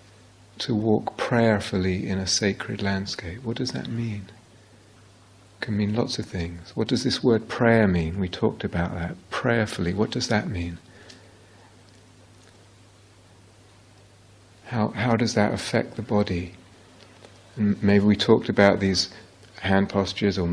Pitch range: 95-110 Hz